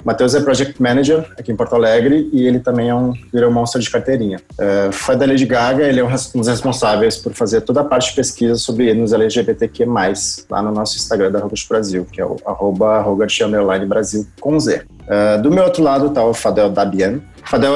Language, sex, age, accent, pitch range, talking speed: Portuguese, male, 20-39, Brazilian, 105-130 Hz, 205 wpm